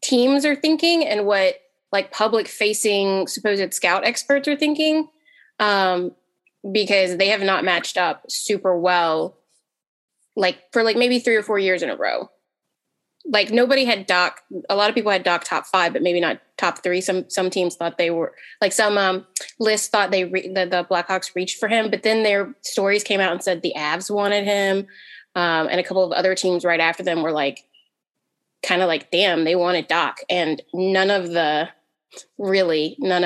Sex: female